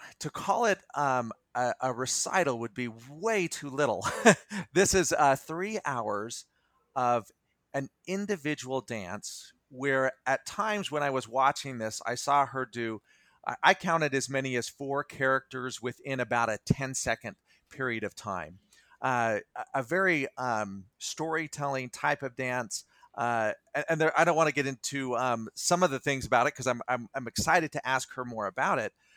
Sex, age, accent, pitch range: male, 40-59, American, 115-145 Hz